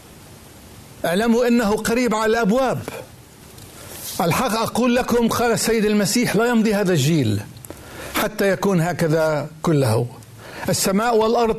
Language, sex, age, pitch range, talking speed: Arabic, male, 60-79, 155-220 Hz, 110 wpm